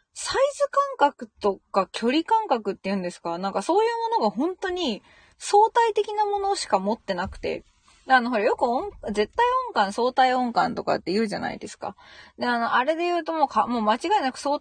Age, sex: 20-39, female